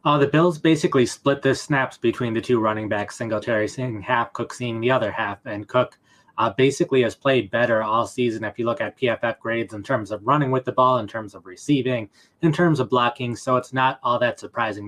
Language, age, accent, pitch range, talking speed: English, 20-39, American, 110-135 Hz, 225 wpm